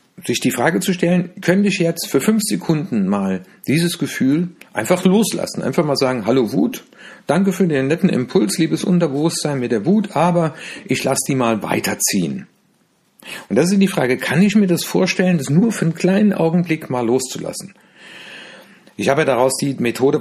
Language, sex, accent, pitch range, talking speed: German, male, German, 130-190 Hz, 180 wpm